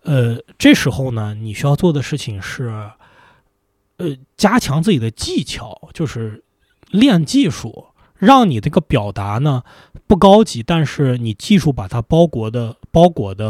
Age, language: 20-39, Chinese